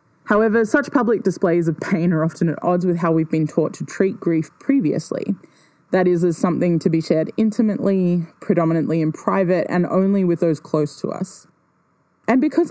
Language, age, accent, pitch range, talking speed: English, 20-39, Australian, 155-195 Hz, 185 wpm